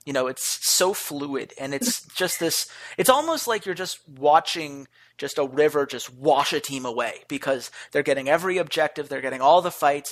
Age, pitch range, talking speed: 30-49, 150-215 Hz, 195 wpm